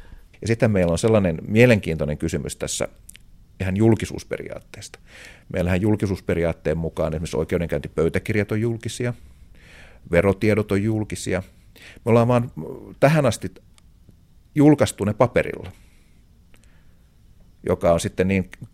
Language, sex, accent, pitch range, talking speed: Finnish, male, native, 85-110 Hz, 100 wpm